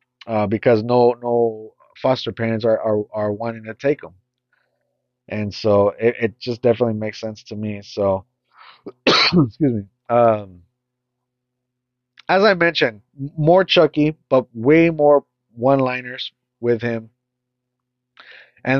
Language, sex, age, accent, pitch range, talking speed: English, male, 30-49, American, 115-150 Hz, 130 wpm